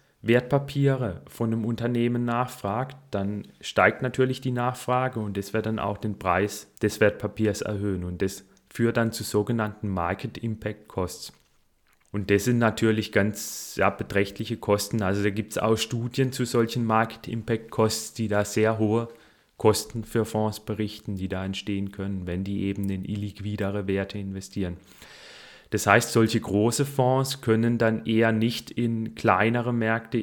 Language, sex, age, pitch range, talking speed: German, male, 30-49, 100-115 Hz, 155 wpm